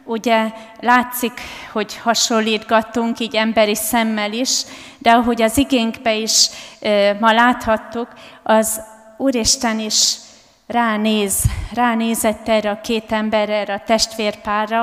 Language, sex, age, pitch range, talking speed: Hungarian, female, 30-49, 205-230 Hz, 110 wpm